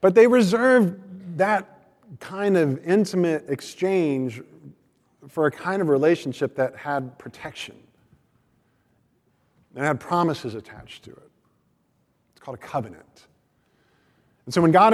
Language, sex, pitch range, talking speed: English, male, 120-155 Hz, 120 wpm